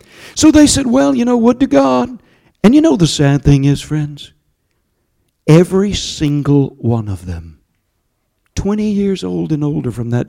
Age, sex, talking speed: 60-79, male, 170 wpm